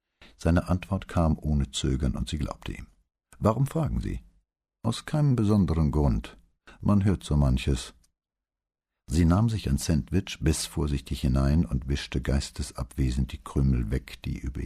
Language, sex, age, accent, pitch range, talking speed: English, male, 60-79, German, 70-90 Hz, 145 wpm